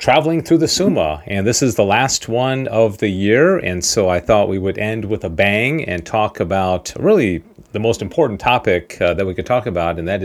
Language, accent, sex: English, American, male